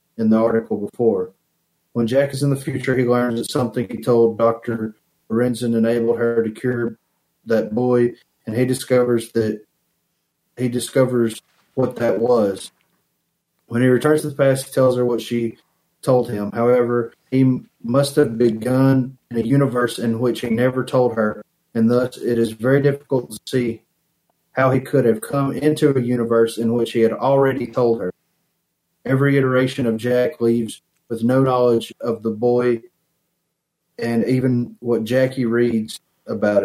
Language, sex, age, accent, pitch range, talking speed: English, male, 40-59, American, 115-140 Hz, 165 wpm